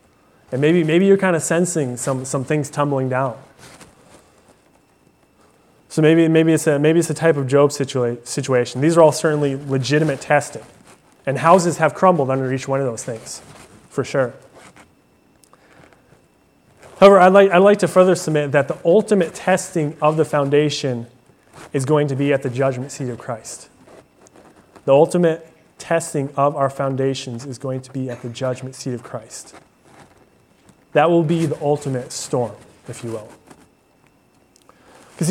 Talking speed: 160 wpm